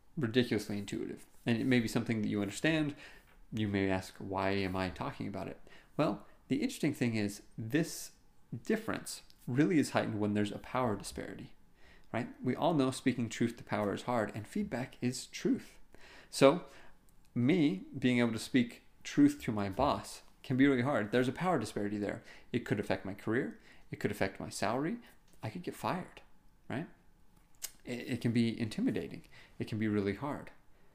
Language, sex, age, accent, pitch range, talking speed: English, male, 30-49, American, 105-130 Hz, 175 wpm